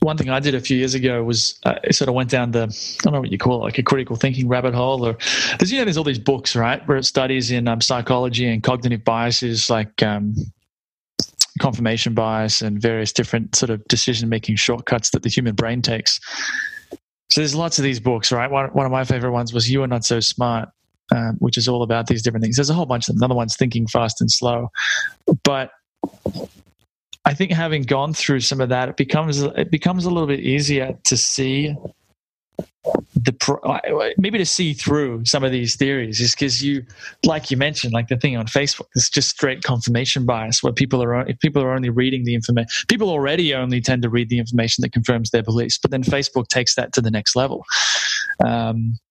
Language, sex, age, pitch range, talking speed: English, male, 20-39, 120-140 Hz, 215 wpm